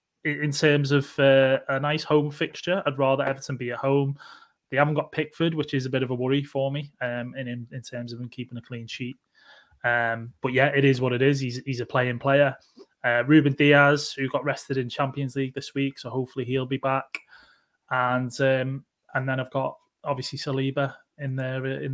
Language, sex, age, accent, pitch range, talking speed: English, male, 20-39, British, 130-150 Hz, 215 wpm